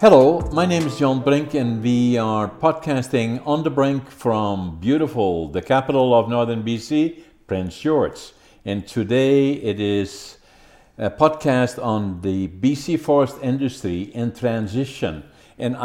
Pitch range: 90-120 Hz